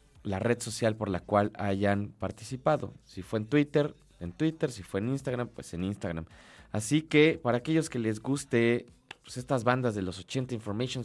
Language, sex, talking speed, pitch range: Spanish, male, 185 wpm, 105-135 Hz